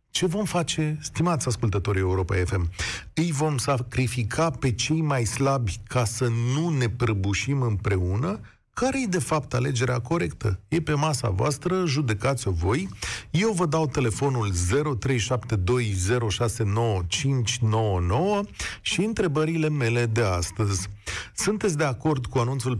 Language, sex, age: Romanian, male, 40-59